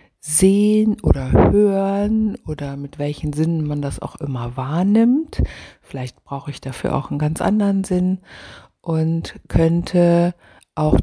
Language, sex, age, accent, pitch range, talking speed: German, female, 60-79, German, 140-185 Hz, 130 wpm